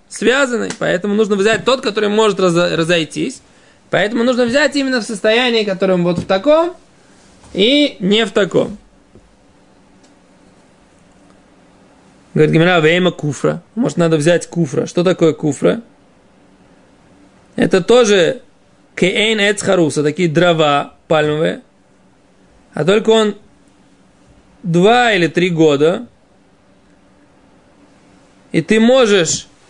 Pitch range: 175-225 Hz